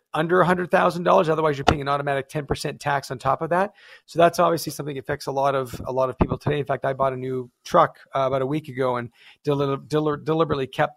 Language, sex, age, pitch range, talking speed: English, male, 40-59, 130-150 Hz, 255 wpm